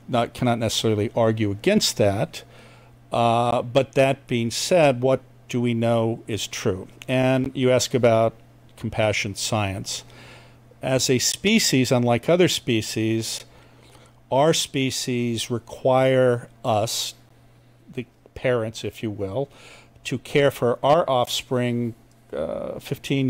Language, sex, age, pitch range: English, male, 50-69, 115-130 Hz